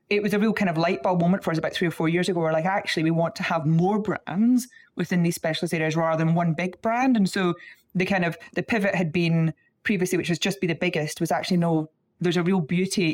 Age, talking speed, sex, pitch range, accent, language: 30-49, 265 wpm, female, 160-195 Hz, British, English